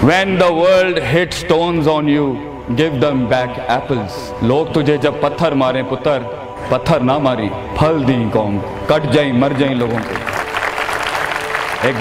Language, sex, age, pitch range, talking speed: Urdu, male, 40-59, 130-175 Hz, 140 wpm